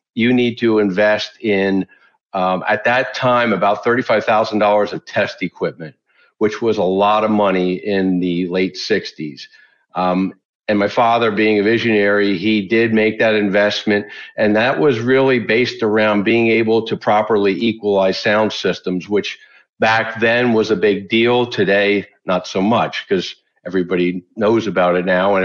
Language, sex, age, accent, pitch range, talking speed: English, male, 50-69, American, 95-115 Hz, 160 wpm